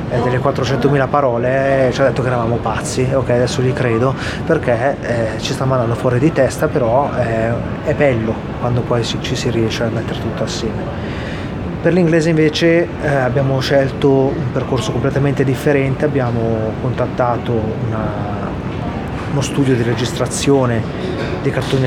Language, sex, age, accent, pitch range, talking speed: Italian, male, 30-49, native, 120-135 Hz, 150 wpm